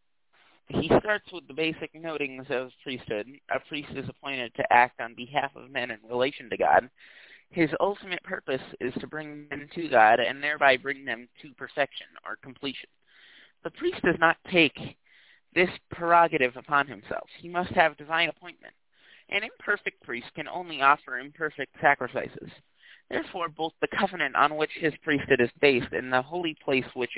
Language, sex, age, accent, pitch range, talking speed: English, male, 30-49, American, 130-165 Hz, 170 wpm